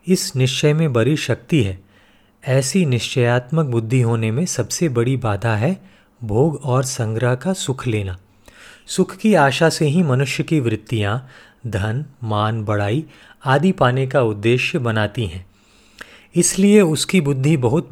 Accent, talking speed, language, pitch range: native, 140 wpm, Hindi, 115-150 Hz